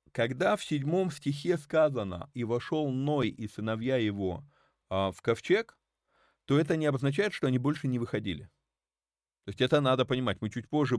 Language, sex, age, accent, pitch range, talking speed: Russian, male, 30-49, native, 100-135 Hz, 165 wpm